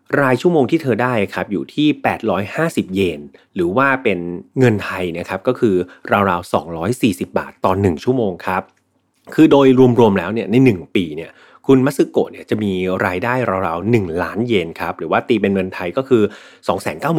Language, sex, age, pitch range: Thai, male, 30-49, 95-130 Hz